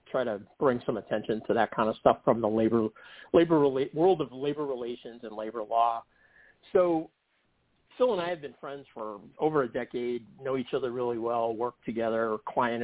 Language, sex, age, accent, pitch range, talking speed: English, male, 40-59, American, 115-140 Hz, 190 wpm